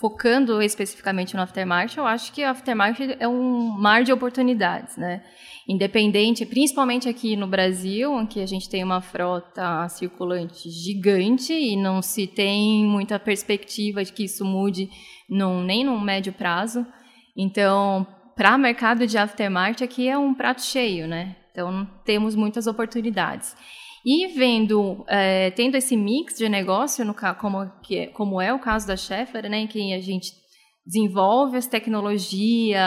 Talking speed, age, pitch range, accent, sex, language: 155 wpm, 10-29, 195-235 Hz, Brazilian, female, Portuguese